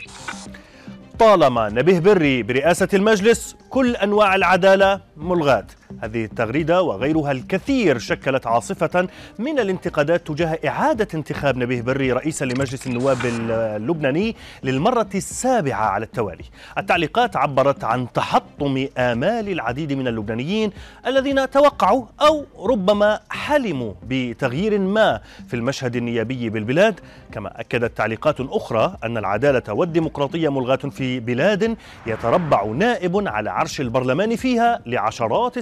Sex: male